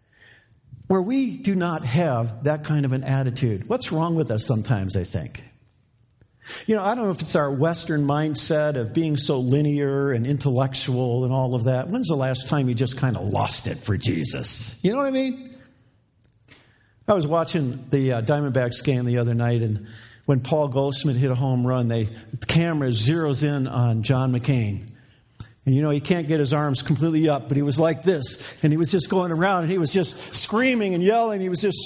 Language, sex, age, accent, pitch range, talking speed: English, male, 50-69, American, 125-185 Hz, 210 wpm